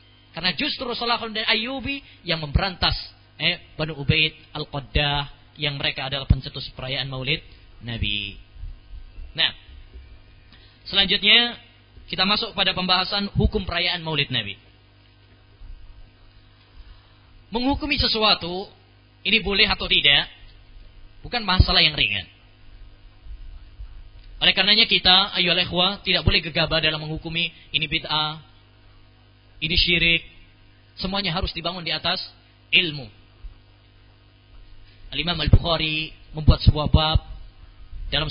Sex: male